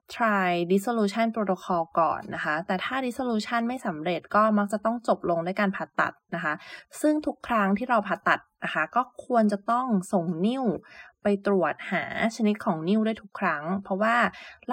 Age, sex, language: 20-39, female, Thai